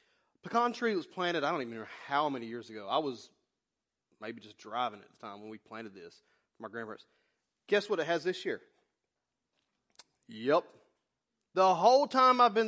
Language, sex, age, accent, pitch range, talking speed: English, male, 30-49, American, 125-195 Hz, 185 wpm